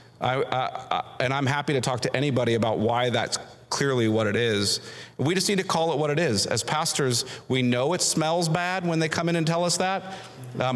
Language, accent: English, American